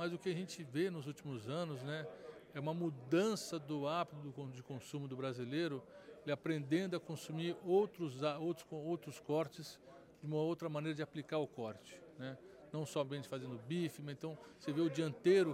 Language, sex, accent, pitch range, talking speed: Portuguese, male, Brazilian, 140-170 Hz, 180 wpm